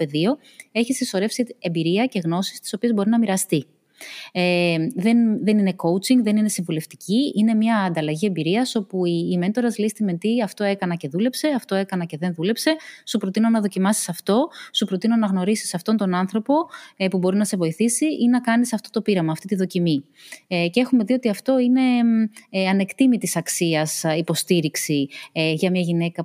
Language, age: Greek, 20-39